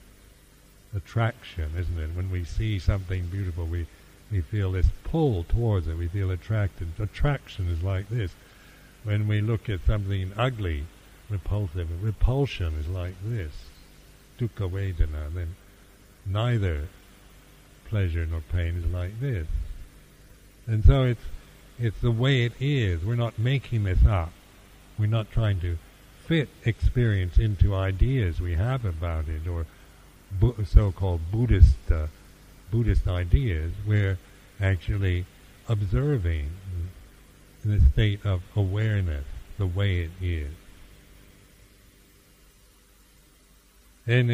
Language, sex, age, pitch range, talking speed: English, male, 60-79, 85-105 Hz, 120 wpm